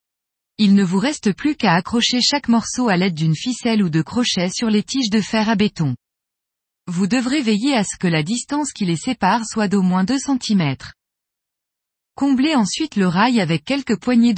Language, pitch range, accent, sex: French, 190-250 Hz, French, female